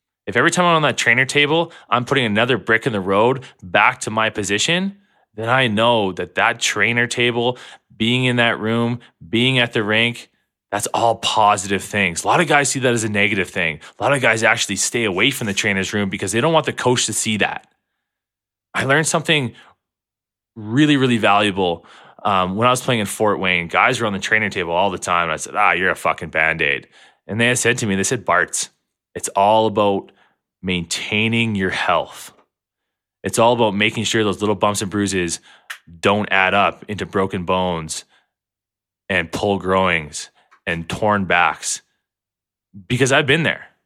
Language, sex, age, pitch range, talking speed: English, male, 20-39, 95-120 Hz, 190 wpm